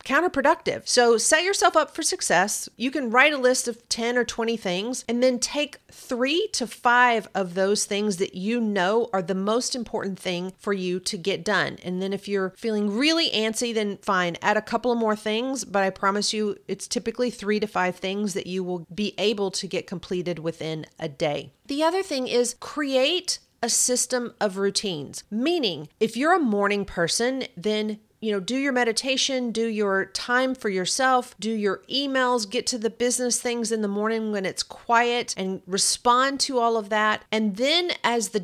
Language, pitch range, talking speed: English, 195-245 Hz, 195 wpm